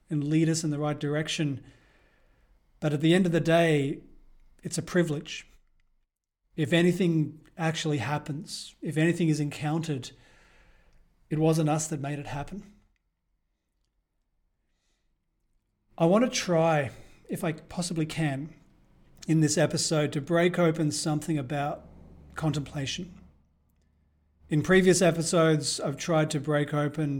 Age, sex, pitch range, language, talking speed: 40-59, male, 140-160 Hz, English, 125 wpm